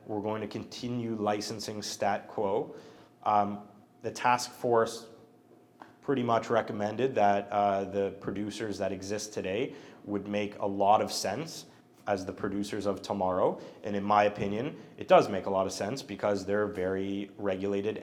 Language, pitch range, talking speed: English, 105-140 Hz, 155 wpm